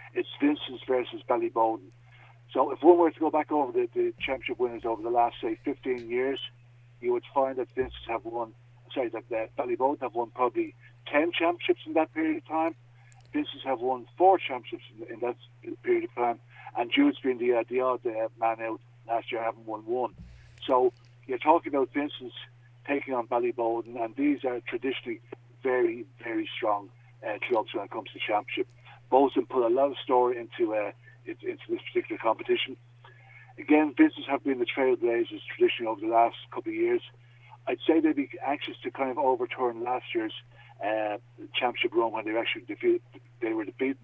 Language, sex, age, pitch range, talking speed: English, male, 60-79, 120-165 Hz, 190 wpm